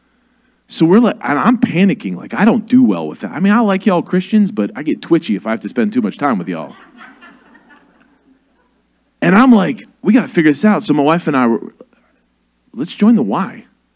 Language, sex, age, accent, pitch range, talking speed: English, male, 40-59, American, 185-250 Hz, 225 wpm